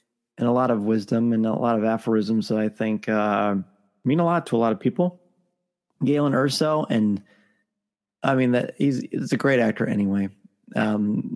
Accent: American